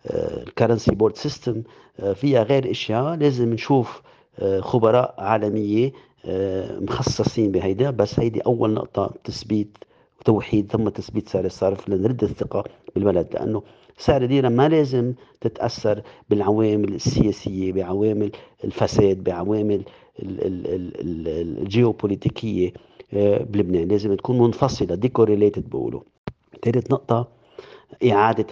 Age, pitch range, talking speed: 50-69, 100-130 Hz, 95 wpm